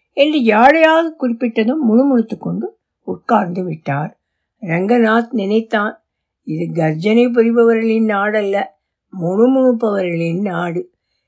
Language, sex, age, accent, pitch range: Tamil, female, 60-79, native, 185-260 Hz